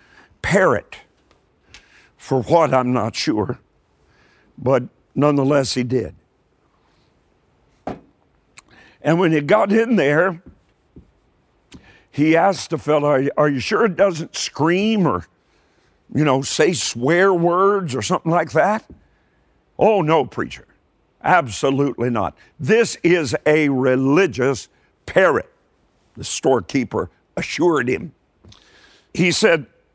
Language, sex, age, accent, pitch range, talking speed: English, male, 60-79, American, 140-195 Hz, 105 wpm